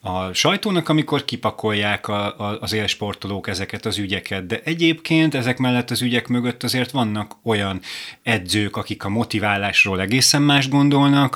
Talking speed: 135 wpm